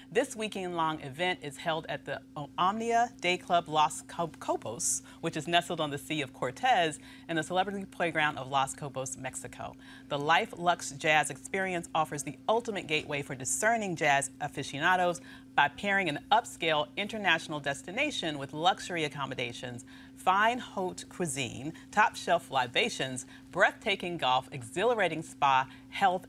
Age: 40-59